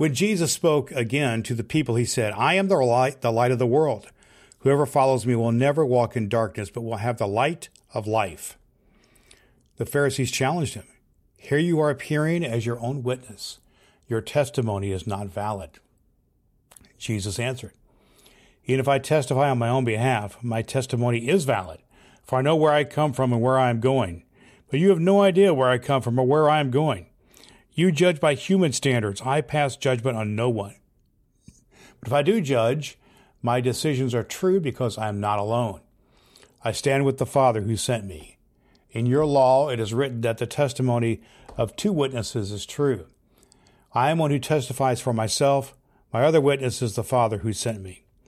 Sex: male